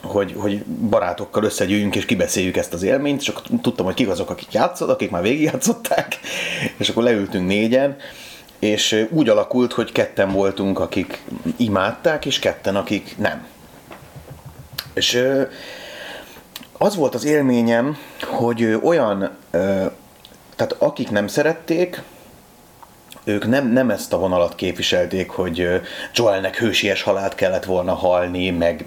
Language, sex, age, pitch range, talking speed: Hungarian, male, 30-49, 95-140 Hz, 130 wpm